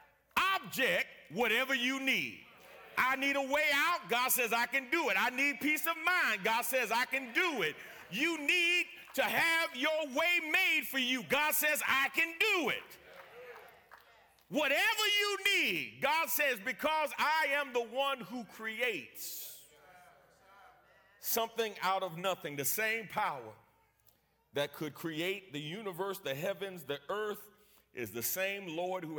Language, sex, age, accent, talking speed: English, male, 40-59, American, 150 wpm